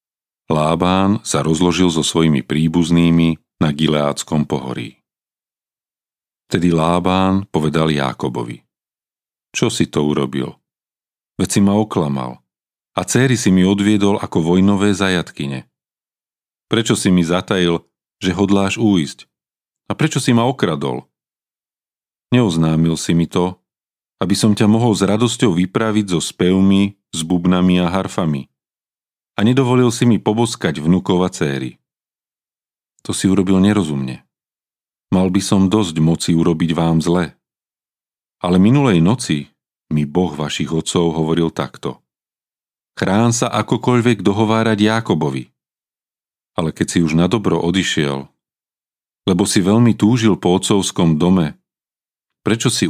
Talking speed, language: 120 wpm, Slovak